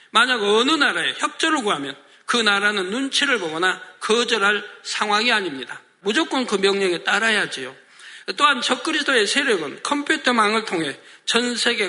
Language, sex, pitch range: Korean, male, 205-270 Hz